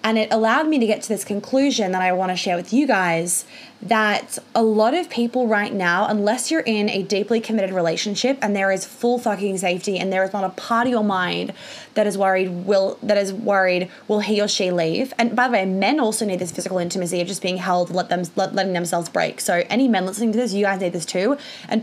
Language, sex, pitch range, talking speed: English, female, 185-230 Hz, 245 wpm